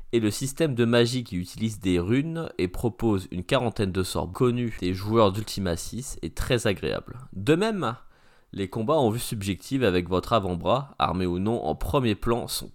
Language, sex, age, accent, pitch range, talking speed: French, male, 20-39, French, 105-150 Hz, 190 wpm